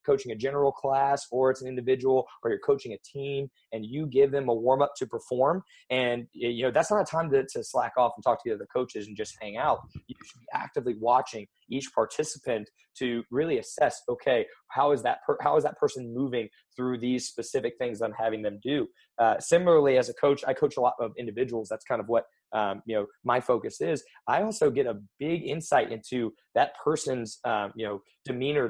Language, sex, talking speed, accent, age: English, male, 215 wpm, American, 20-39